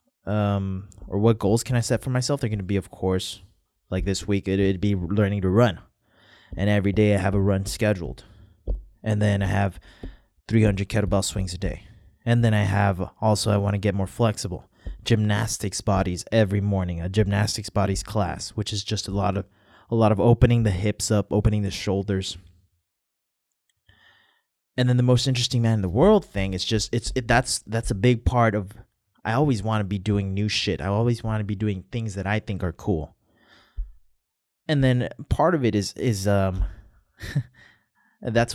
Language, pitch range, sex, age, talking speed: English, 95-115 Hz, male, 20-39, 195 wpm